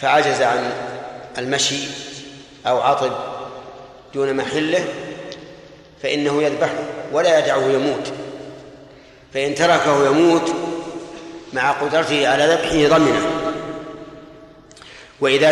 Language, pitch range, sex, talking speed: Arabic, 135-160 Hz, male, 80 wpm